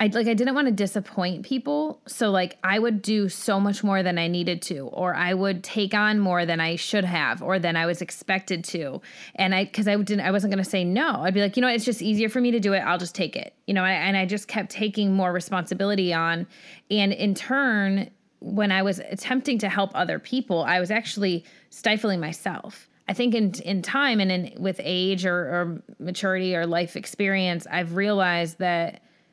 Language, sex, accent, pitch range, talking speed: English, female, American, 185-230 Hz, 225 wpm